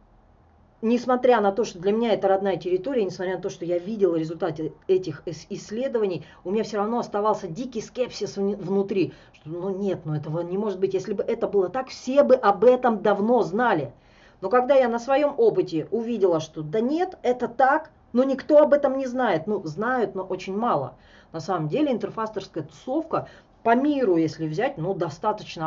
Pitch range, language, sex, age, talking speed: 170-235 Hz, Russian, female, 30-49, 185 wpm